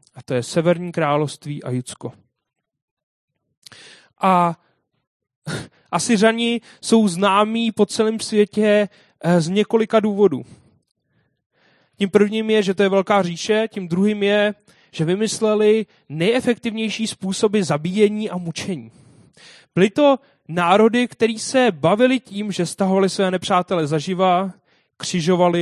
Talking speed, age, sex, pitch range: 110 wpm, 30-49, male, 150-200 Hz